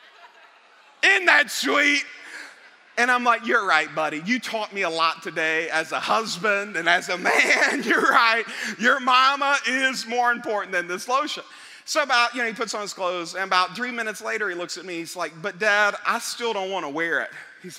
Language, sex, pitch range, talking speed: English, male, 180-285 Hz, 210 wpm